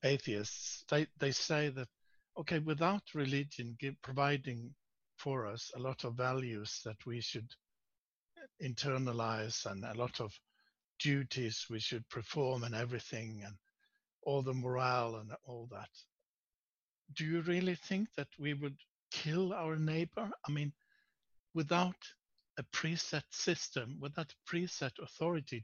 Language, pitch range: English, 125-165 Hz